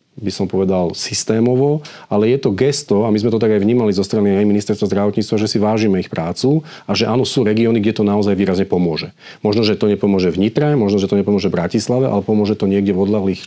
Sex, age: male, 40-59